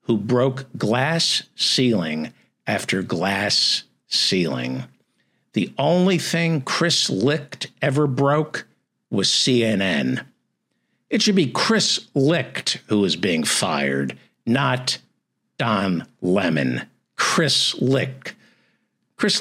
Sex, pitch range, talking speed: male, 120-180 Hz, 95 wpm